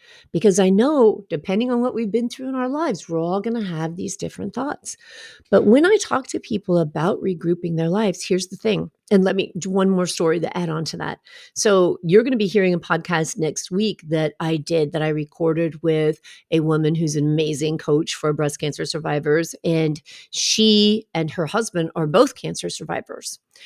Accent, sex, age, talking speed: American, female, 40-59, 205 wpm